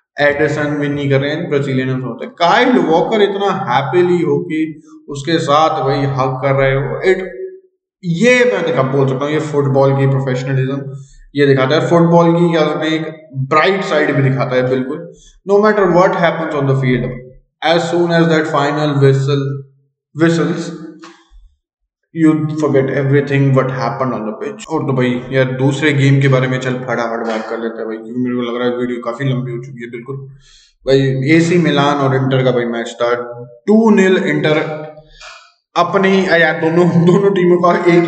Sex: male